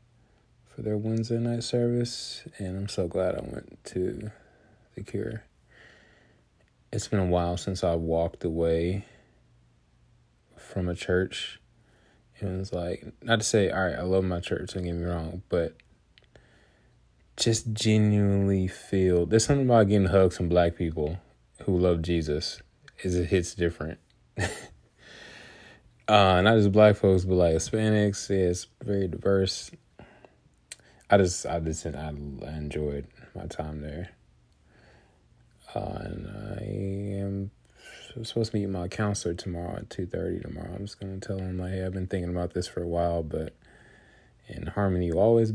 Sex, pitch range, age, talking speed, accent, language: male, 85-105 Hz, 20-39, 150 wpm, American, English